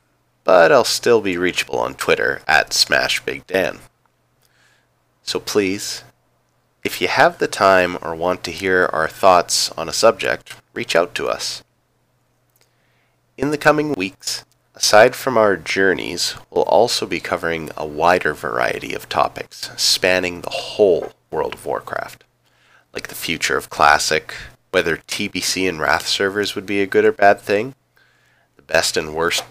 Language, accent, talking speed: English, American, 150 wpm